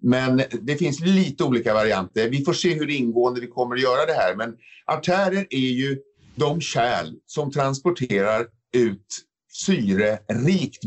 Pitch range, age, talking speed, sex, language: 115-165 Hz, 50-69, 150 wpm, male, English